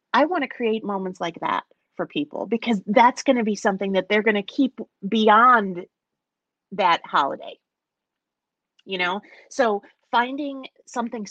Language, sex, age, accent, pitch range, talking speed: English, female, 30-49, American, 200-245 Hz, 150 wpm